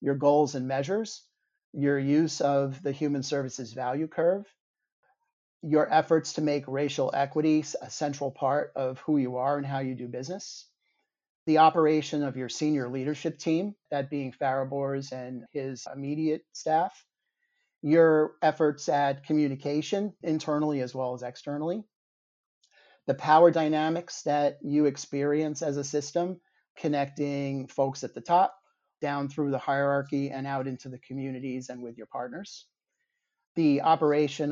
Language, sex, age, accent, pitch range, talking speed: English, male, 40-59, American, 135-160 Hz, 145 wpm